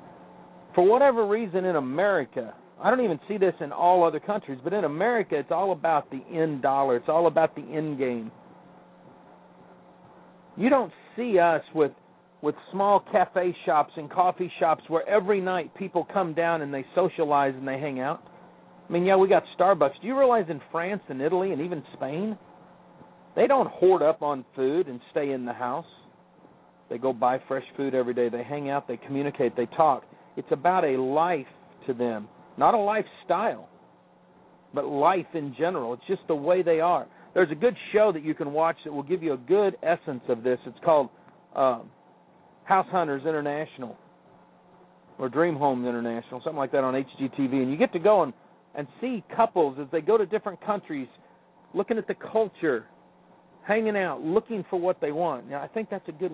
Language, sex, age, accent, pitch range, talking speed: English, male, 50-69, American, 140-190 Hz, 190 wpm